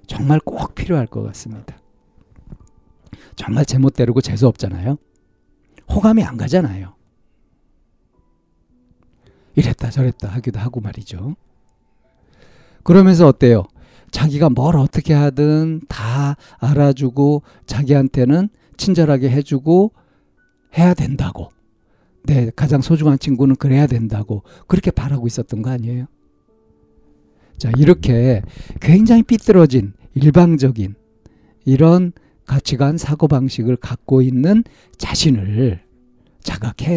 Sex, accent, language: male, native, Korean